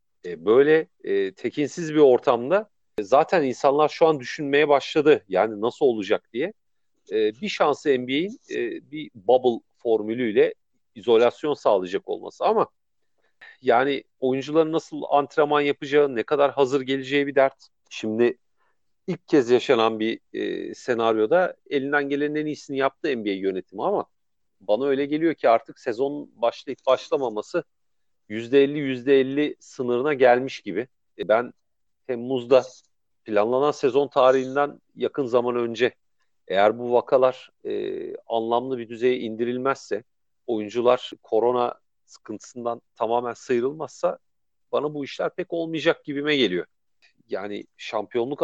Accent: native